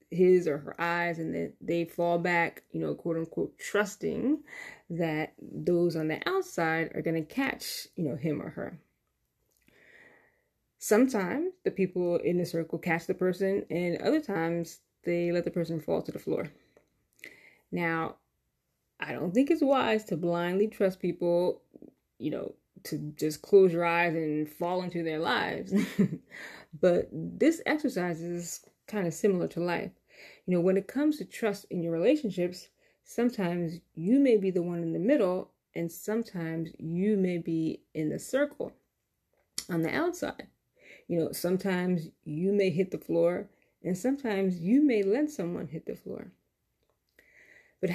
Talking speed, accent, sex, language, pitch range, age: 160 wpm, American, female, English, 170-210 Hz, 20-39